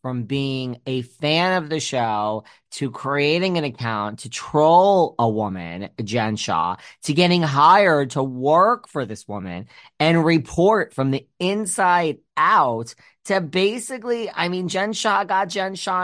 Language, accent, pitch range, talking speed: English, American, 125-200 Hz, 150 wpm